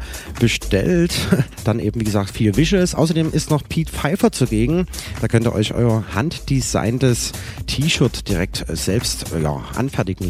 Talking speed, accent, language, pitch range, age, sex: 140 wpm, German, German, 95-135 Hz, 30-49, male